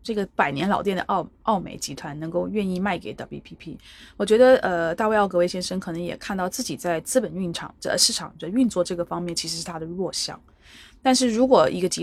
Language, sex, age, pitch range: Chinese, female, 20-39, 170-215 Hz